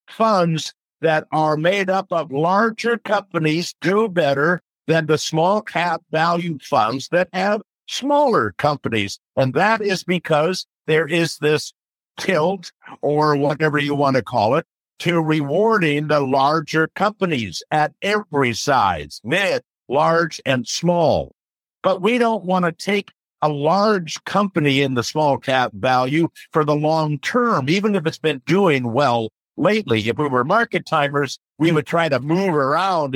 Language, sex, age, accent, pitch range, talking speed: English, male, 50-69, American, 140-185 Hz, 150 wpm